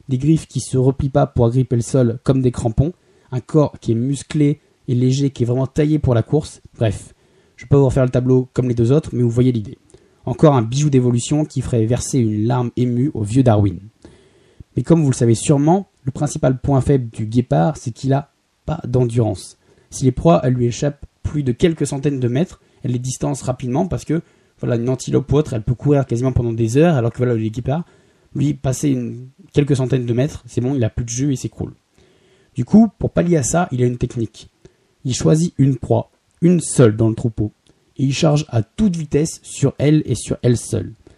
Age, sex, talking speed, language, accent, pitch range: 20-39, male, 230 wpm, French, French, 120-150 Hz